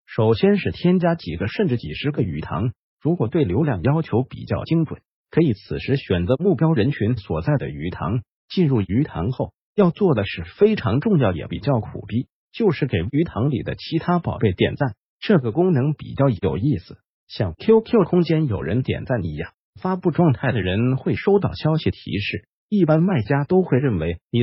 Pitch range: 110-170 Hz